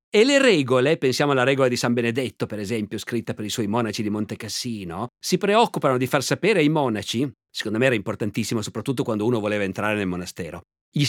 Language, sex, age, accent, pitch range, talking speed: Italian, male, 50-69, native, 125-190 Hz, 200 wpm